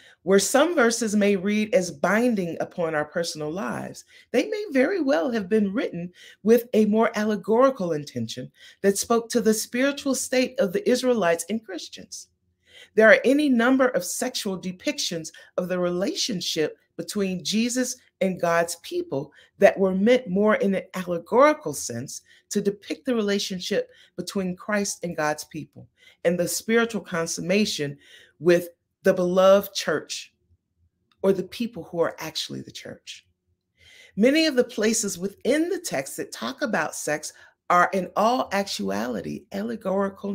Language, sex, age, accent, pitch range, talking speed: English, female, 30-49, American, 170-230 Hz, 145 wpm